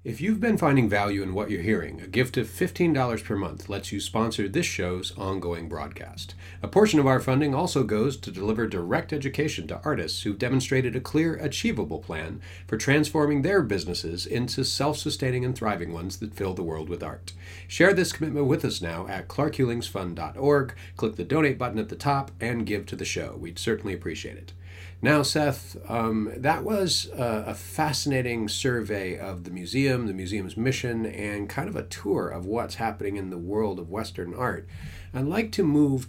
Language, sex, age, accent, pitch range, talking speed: English, male, 40-59, American, 90-130 Hz, 185 wpm